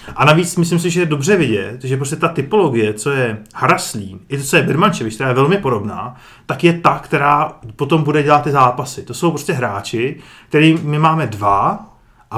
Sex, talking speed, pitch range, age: male, 195 wpm, 135-170 Hz, 30-49